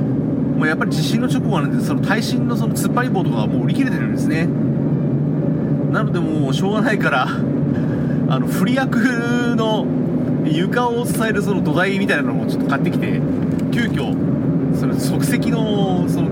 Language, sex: Japanese, male